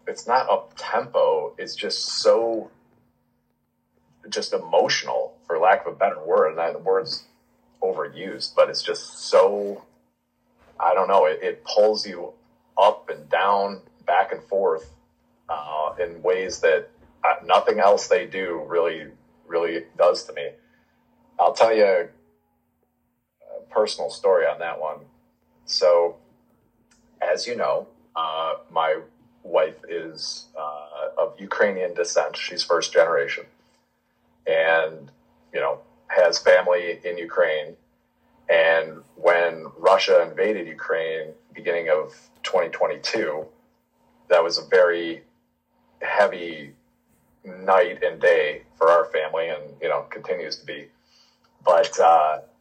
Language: English